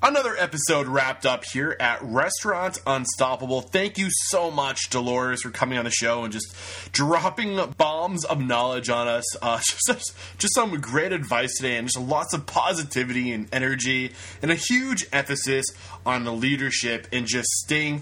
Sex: male